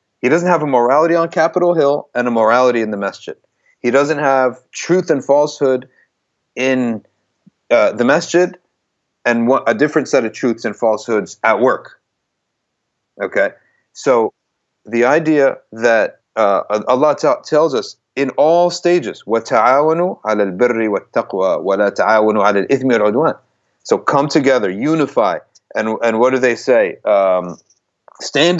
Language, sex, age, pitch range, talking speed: English, male, 40-59, 115-160 Hz, 140 wpm